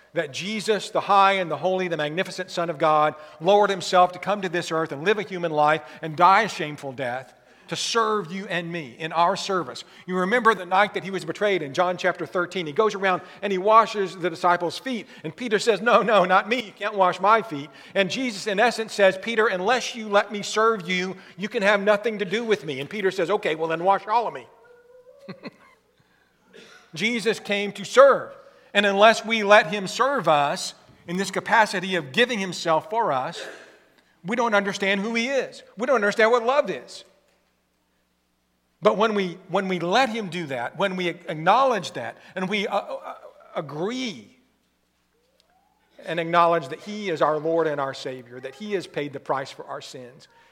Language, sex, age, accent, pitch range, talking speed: English, male, 50-69, American, 165-215 Hz, 200 wpm